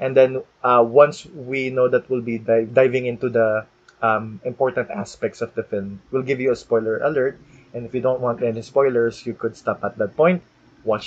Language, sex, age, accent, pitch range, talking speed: Filipino, male, 20-39, native, 115-150 Hz, 210 wpm